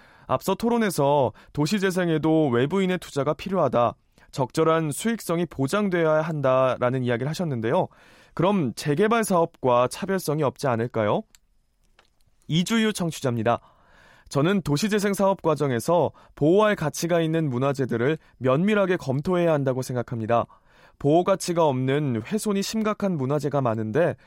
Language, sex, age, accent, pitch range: Korean, male, 20-39, native, 130-185 Hz